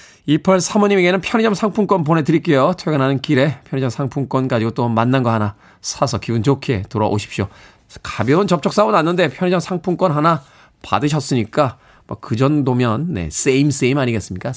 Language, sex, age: Korean, male, 20-39